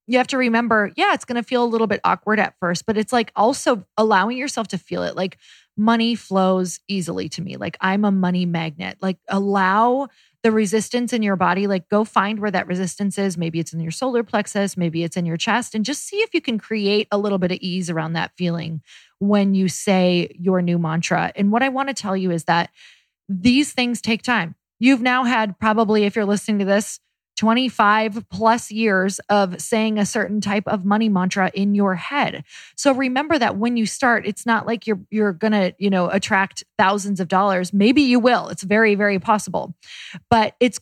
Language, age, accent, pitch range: English, 30-49, American, 190-235 Hz